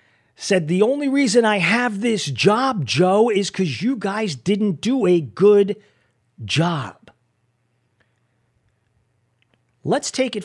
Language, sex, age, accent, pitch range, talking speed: English, male, 40-59, American, 120-175 Hz, 120 wpm